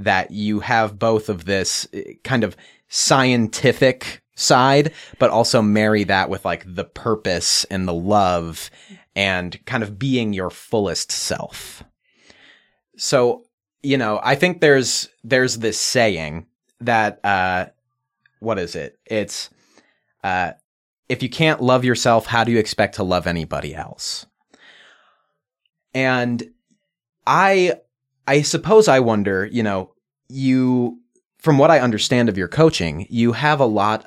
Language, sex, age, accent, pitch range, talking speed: English, male, 30-49, American, 95-125 Hz, 135 wpm